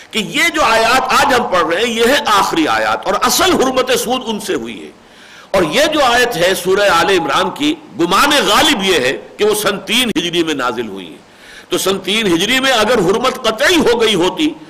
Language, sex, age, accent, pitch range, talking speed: English, male, 50-69, Indian, 170-245 Hz, 220 wpm